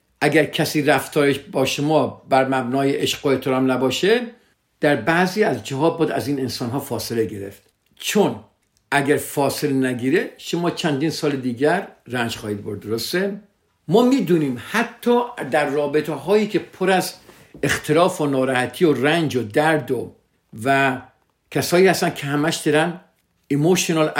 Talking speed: 140 wpm